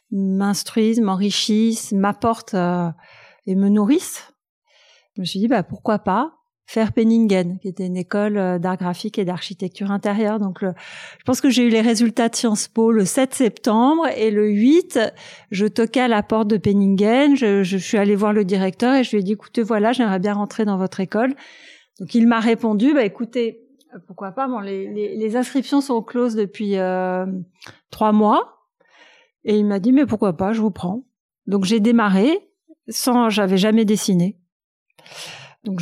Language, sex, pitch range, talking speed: French, female, 195-240 Hz, 180 wpm